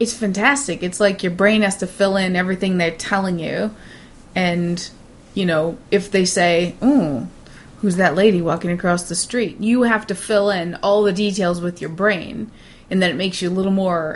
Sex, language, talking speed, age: female, English, 200 wpm, 20-39